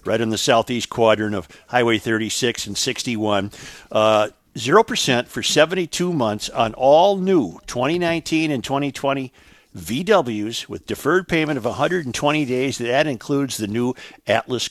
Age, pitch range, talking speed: 50-69, 110-130 Hz, 135 wpm